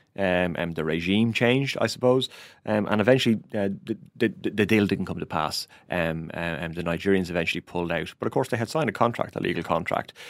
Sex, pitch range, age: male, 90-105 Hz, 30-49